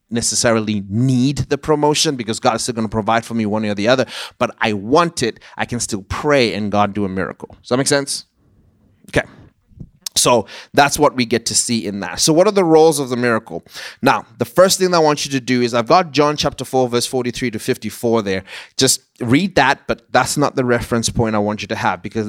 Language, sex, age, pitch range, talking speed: English, male, 30-49, 105-130 Hz, 240 wpm